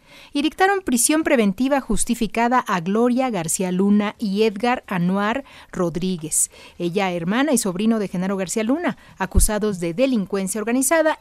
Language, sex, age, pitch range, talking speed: Spanish, female, 40-59, 180-250 Hz, 135 wpm